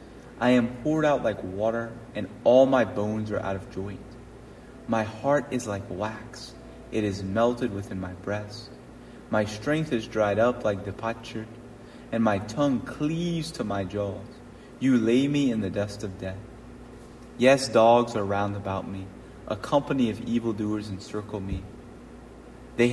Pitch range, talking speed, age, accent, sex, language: 105-130 Hz, 155 wpm, 30-49, American, male, English